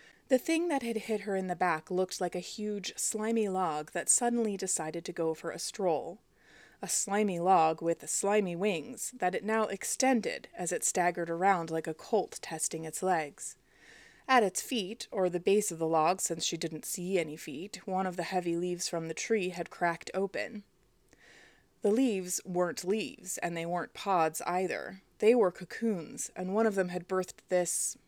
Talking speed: 190 wpm